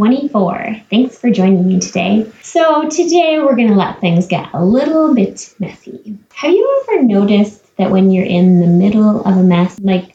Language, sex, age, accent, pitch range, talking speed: English, female, 20-39, American, 180-235 Hz, 190 wpm